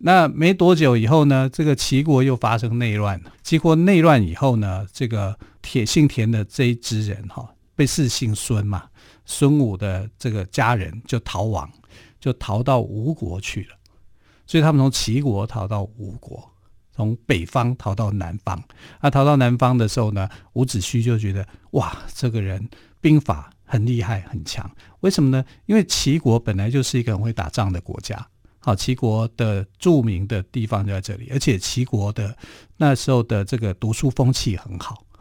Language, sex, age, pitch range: Chinese, male, 50-69, 100-130 Hz